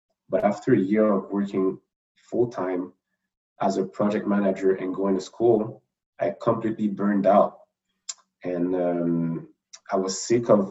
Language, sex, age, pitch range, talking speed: English, male, 30-49, 95-110 Hz, 140 wpm